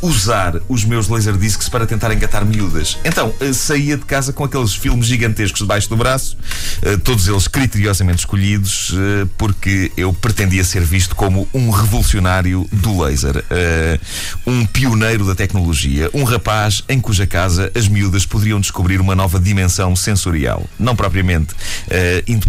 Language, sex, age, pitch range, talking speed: Portuguese, male, 30-49, 90-110 Hz, 140 wpm